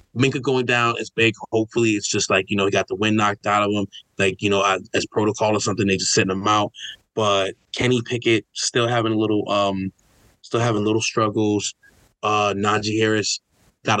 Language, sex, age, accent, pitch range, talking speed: English, male, 20-39, American, 105-120 Hz, 195 wpm